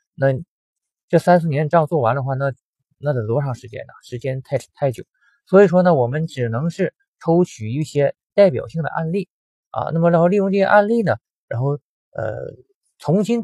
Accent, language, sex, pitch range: native, Chinese, male, 120-170 Hz